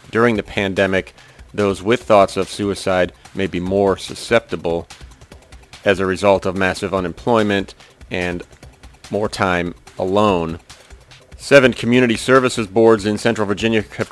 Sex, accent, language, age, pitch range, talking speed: male, American, English, 40-59, 95-115 Hz, 130 wpm